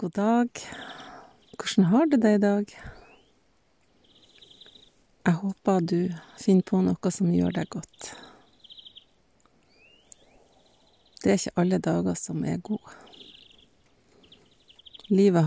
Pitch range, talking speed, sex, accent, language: 175-205 Hz, 110 wpm, female, Swedish, English